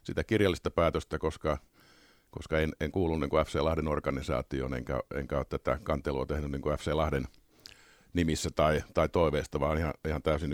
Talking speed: 165 wpm